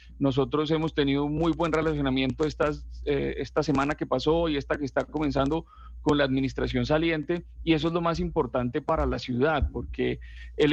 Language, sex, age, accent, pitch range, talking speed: Spanish, male, 40-59, Colombian, 140-170 Hz, 185 wpm